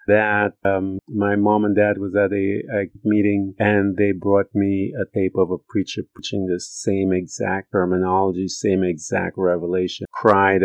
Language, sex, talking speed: English, male, 165 wpm